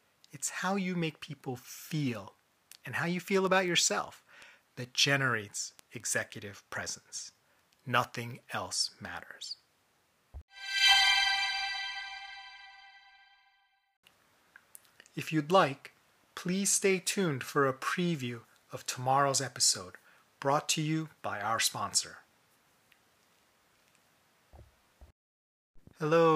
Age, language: 30-49, English